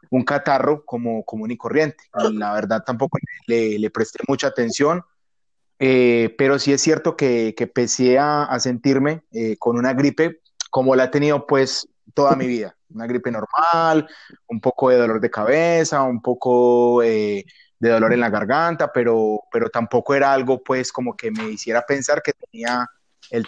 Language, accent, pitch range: Spanish, Colombian, 120-145 Hz